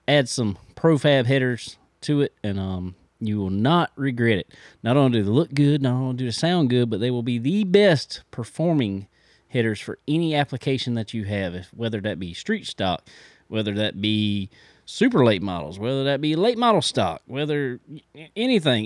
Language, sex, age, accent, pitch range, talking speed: English, male, 30-49, American, 110-160 Hz, 190 wpm